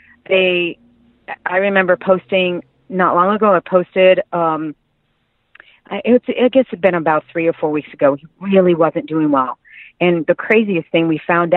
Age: 40-59